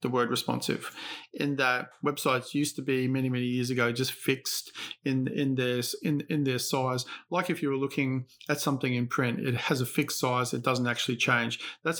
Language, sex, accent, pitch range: English, male, Australian, 130-145 Hz